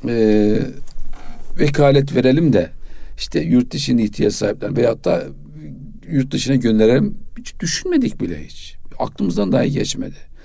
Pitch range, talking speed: 105-145 Hz, 115 wpm